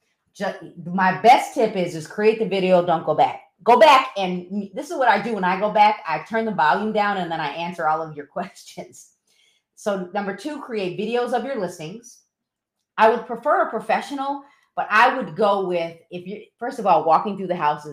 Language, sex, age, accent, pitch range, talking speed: English, female, 30-49, American, 170-225 Hz, 215 wpm